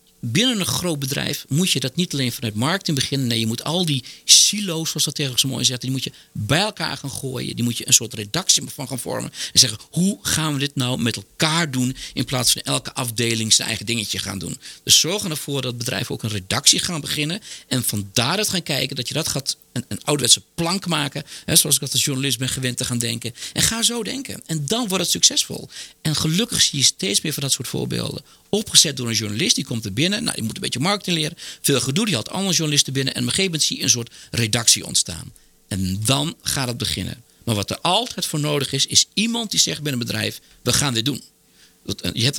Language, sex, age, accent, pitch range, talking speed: Dutch, male, 40-59, Dutch, 120-160 Hz, 240 wpm